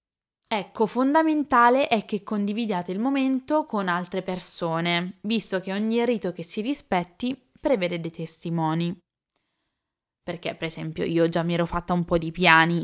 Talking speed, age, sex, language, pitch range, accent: 150 wpm, 10-29, female, Italian, 170-205 Hz, native